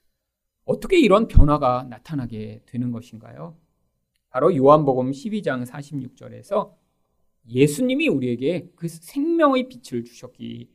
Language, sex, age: Korean, male, 40-59